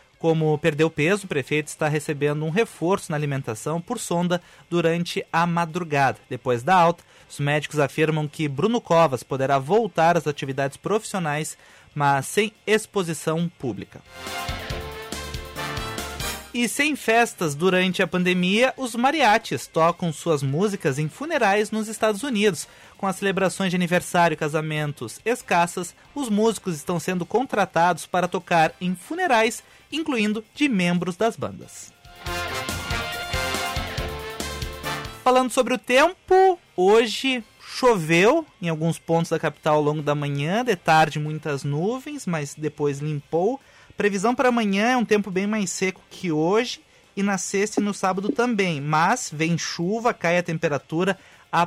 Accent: Brazilian